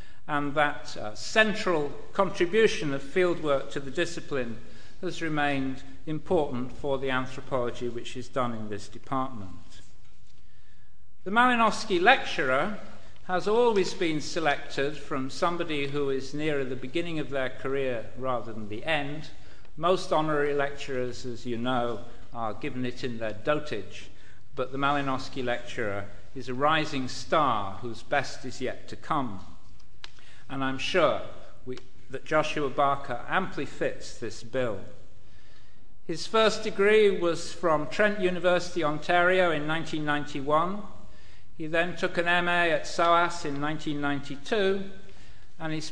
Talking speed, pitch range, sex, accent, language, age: 130 wpm, 125-165 Hz, male, British, English, 50-69